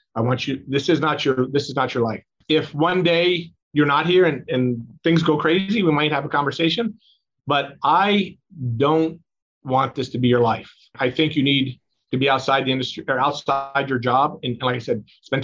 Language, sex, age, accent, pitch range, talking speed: English, male, 40-59, American, 125-160 Hz, 220 wpm